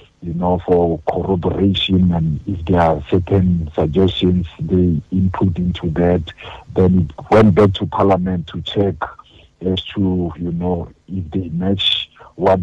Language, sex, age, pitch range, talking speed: English, male, 50-69, 85-100 Hz, 145 wpm